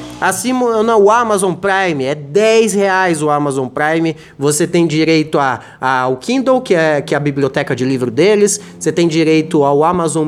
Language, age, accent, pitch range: Portuguese, 20-39, Brazilian, 145-185 Hz